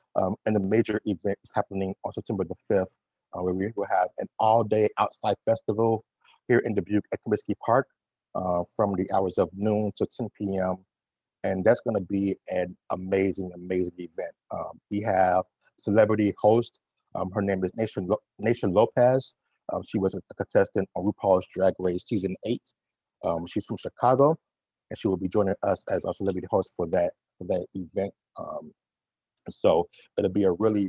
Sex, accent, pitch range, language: male, American, 90-110 Hz, English